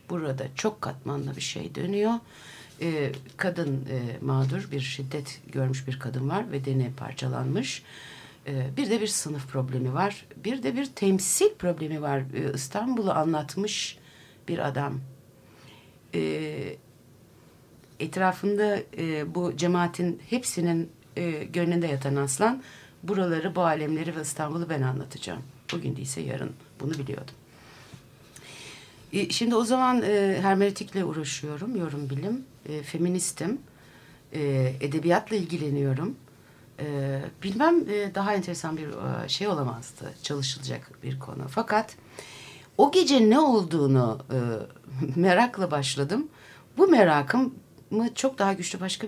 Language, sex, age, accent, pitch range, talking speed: Turkish, female, 60-79, native, 135-195 Hz, 120 wpm